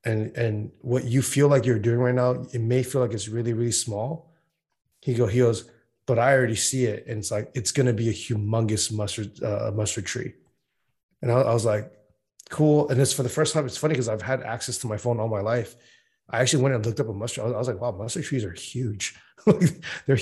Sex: male